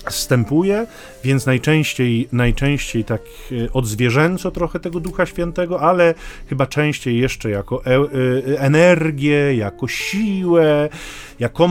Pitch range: 120-155 Hz